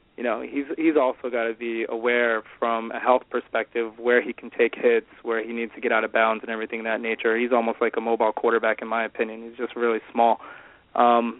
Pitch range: 115-125 Hz